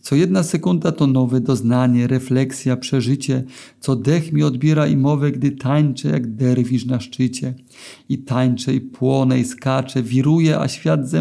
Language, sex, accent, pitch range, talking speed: Polish, male, native, 130-160 Hz, 160 wpm